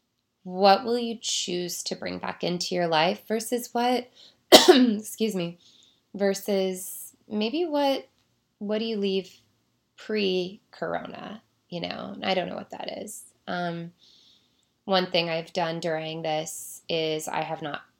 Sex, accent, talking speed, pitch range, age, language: female, American, 140 wpm, 160-200 Hz, 20-39, English